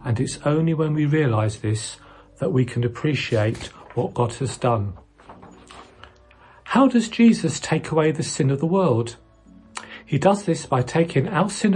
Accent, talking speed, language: British, 165 wpm, English